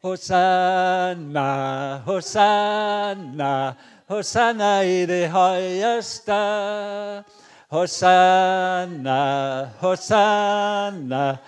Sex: male